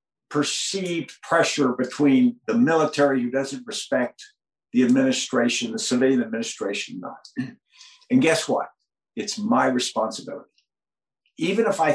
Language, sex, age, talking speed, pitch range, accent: English, male, 60-79, 115 wpm, 120-195 Hz, American